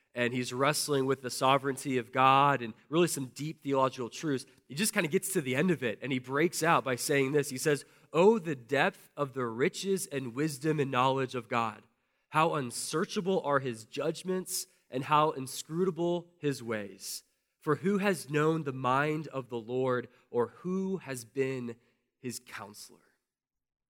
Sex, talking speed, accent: male, 175 wpm, American